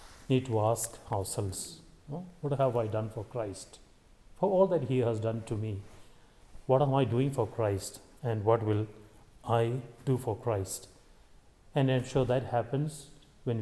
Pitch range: 110-130 Hz